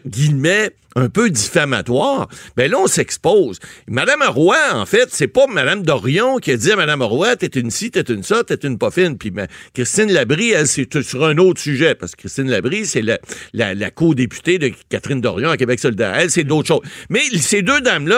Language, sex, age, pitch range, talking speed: French, male, 60-79, 130-195 Hz, 215 wpm